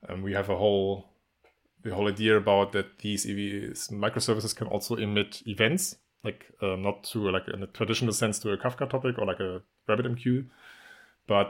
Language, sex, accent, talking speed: English, male, German, 190 wpm